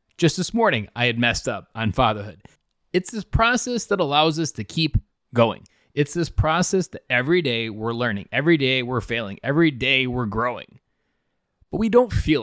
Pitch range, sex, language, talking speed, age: 115-160 Hz, male, English, 185 wpm, 20-39